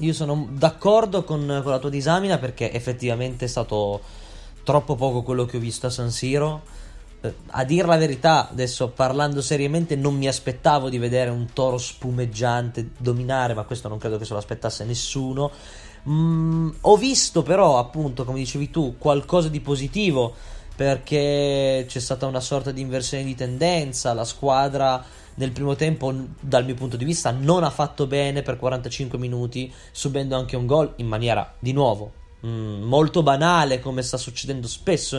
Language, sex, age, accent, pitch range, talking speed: Italian, male, 20-39, native, 120-150 Hz, 165 wpm